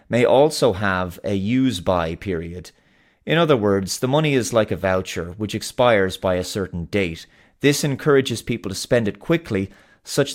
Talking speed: 170 wpm